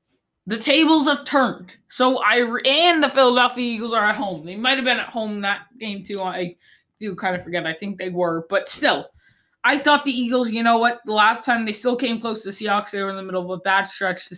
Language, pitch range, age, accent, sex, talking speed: English, 180-245 Hz, 20-39, American, female, 250 wpm